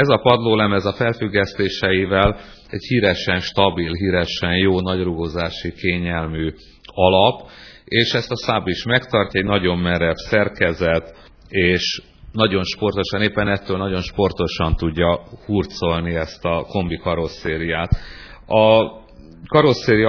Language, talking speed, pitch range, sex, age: Hungarian, 115 wpm, 90-110 Hz, male, 40-59